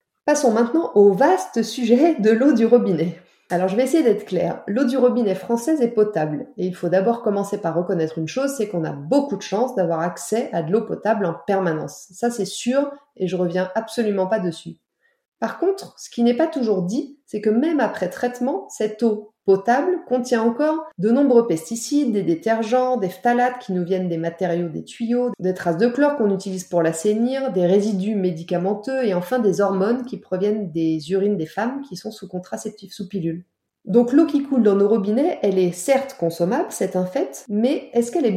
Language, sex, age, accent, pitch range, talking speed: French, female, 30-49, French, 185-245 Hz, 205 wpm